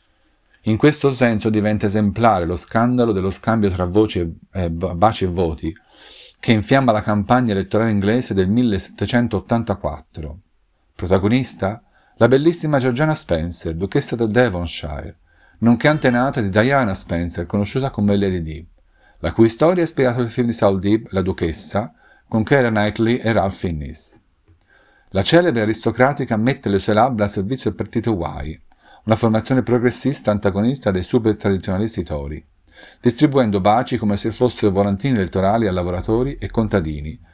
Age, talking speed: 40-59, 145 wpm